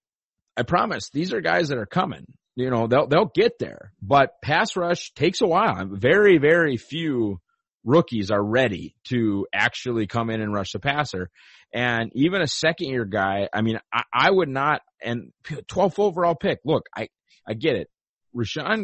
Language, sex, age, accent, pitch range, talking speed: English, male, 30-49, American, 115-160 Hz, 180 wpm